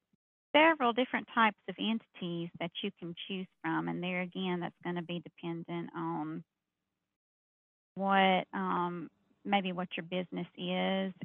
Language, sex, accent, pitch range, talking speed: English, female, American, 165-195 Hz, 140 wpm